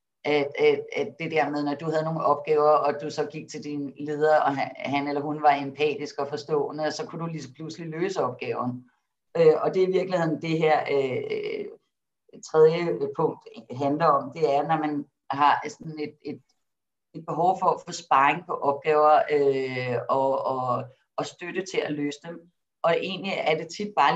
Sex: female